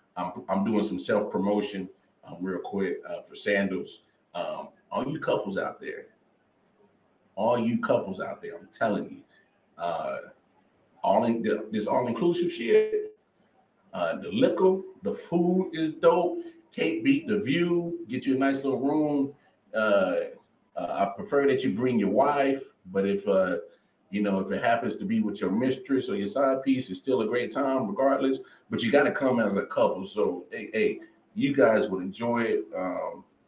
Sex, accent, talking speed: male, American, 175 wpm